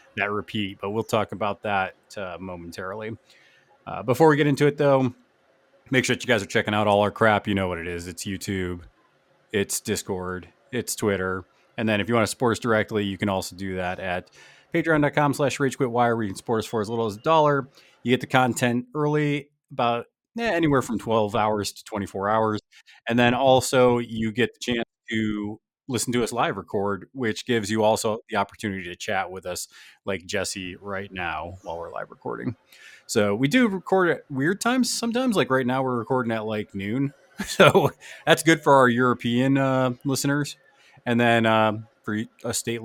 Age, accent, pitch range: 30-49, American, 100-135 Hz